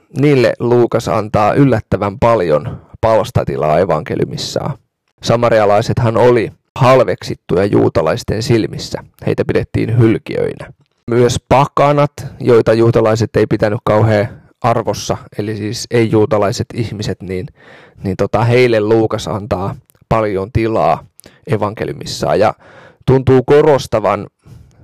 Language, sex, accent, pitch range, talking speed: Finnish, male, native, 105-125 Hz, 95 wpm